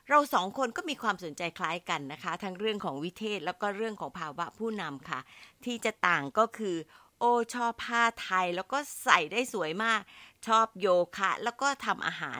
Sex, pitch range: female, 165-230 Hz